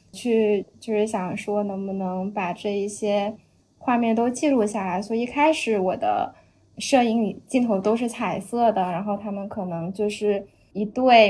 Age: 10-29